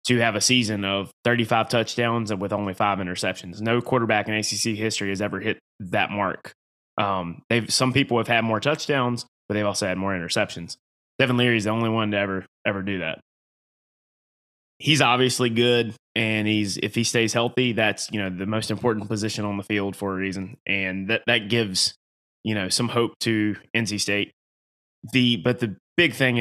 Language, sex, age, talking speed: English, male, 20-39, 195 wpm